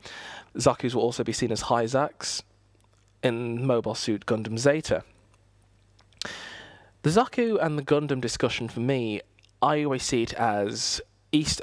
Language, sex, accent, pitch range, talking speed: English, male, British, 105-130 Hz, 135 wpm